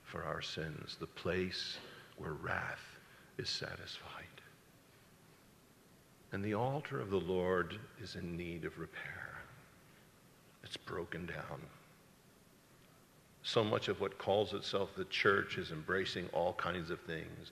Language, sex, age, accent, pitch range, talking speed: English, male, 50-69, American, 95-150 Hz, 125 wpm